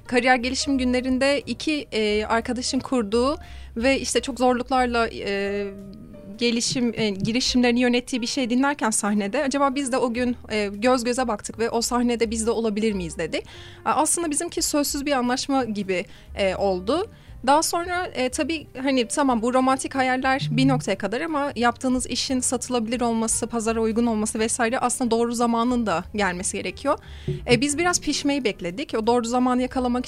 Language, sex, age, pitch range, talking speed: Turkish, female, 30-49, 220-265 Hz, 150 wpm